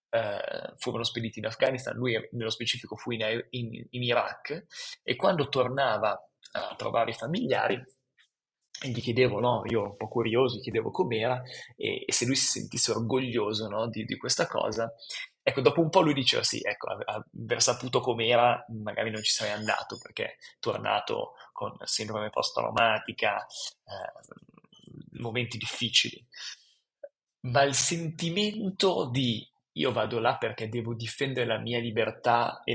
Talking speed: 155 wpm